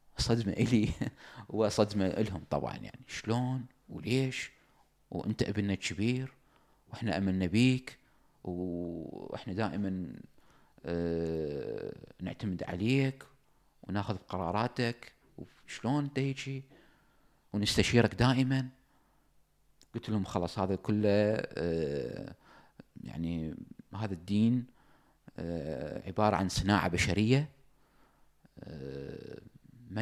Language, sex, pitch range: English, male, 90-120 Hz